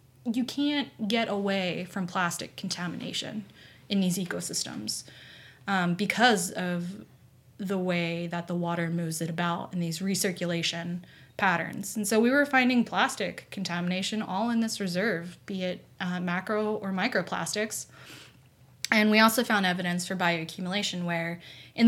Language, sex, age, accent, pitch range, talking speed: English, female, 20-39, American, 170-210 Hz, 140 wpm